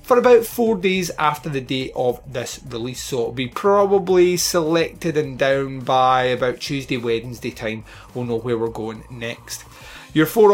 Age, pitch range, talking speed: 30-49, 120-165 Hz, 170 wpm